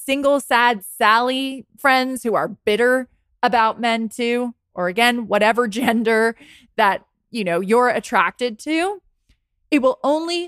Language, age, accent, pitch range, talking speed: English, 20-39, American, 195-250 Hz, 130 wpm